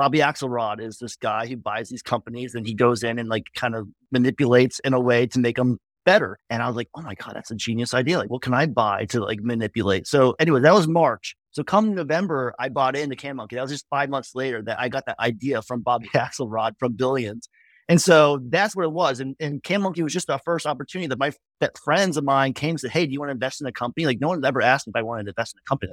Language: English